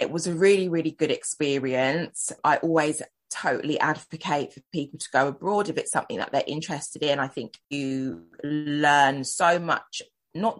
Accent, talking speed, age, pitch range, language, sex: British, 170 wpm, 20-39, 135-170 Hz, English, female